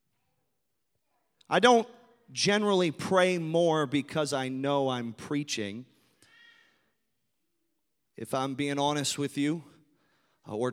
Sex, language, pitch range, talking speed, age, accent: male, English, 120-170 Hz, 95 wpm, 30-49, American